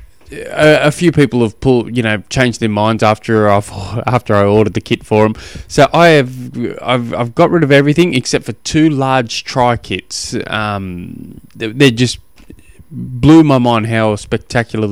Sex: male